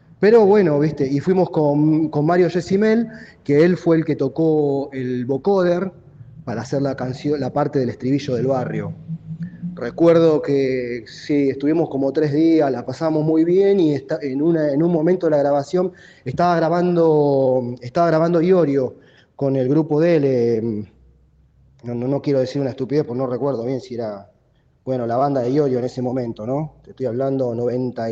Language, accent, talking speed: Spanish, Argentinian, 180 wpm